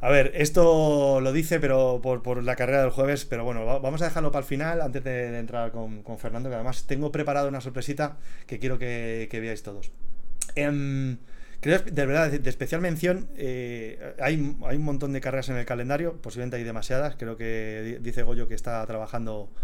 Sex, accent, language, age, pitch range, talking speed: male, Spanish, Spanish, 30-49, 115-150 Hz, 205 wpm